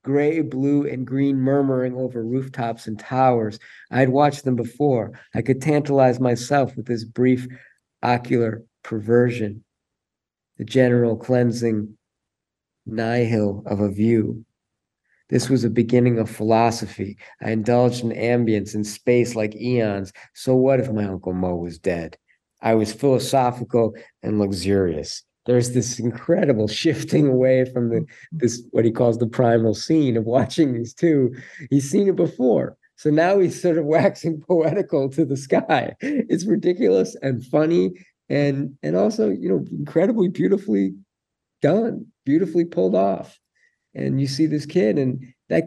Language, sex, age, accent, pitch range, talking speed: English, male, 50-69, American, 115-145 Hz, 145 wpm